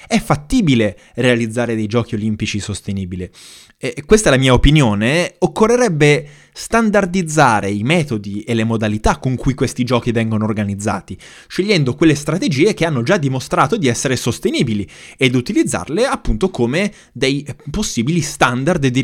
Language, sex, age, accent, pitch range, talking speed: Italian, male, 20-39, native, 115-165 Hz, 135 wpm